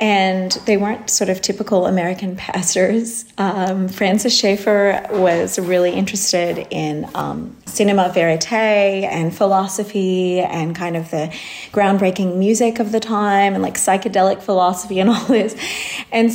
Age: 30-49